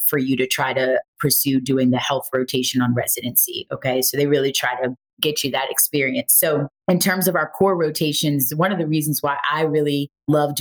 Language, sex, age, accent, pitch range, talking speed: English, female, 30-49, American, 145-170 Hz, 210 wpm